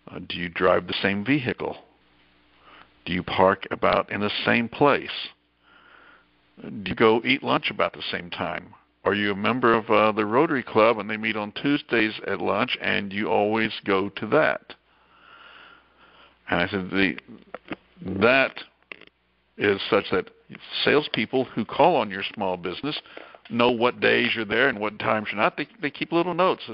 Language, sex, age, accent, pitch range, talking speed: English, male, 60-79, American, 95-130 Hz, 170 wpm